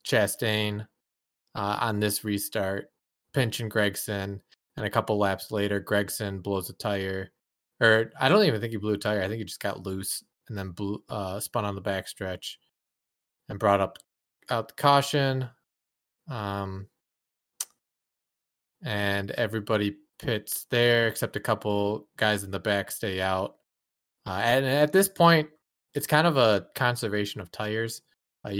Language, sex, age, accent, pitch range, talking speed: English, male, 20-39, American, 95-110 Hz, 155 wpm